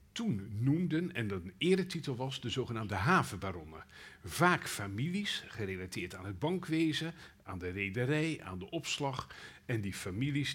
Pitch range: 100-145 Hz